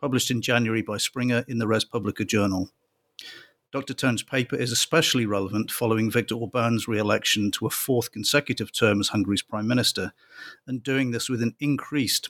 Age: 50-69